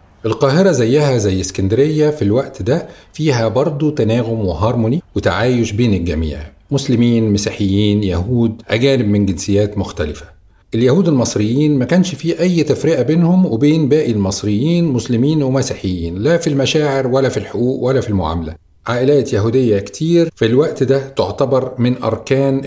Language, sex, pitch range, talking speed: Arabic, male, 100-135 Hz, 140 wpm